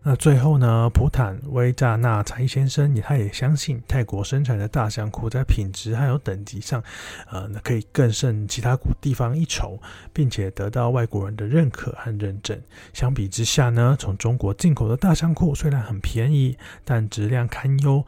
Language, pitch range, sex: Chinese, 105-130 Hz, male